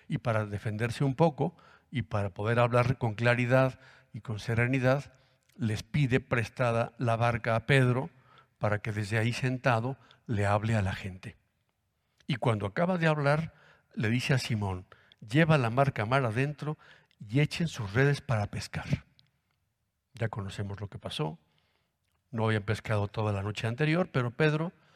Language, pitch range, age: Spanish, 110-130 Hz, 60-79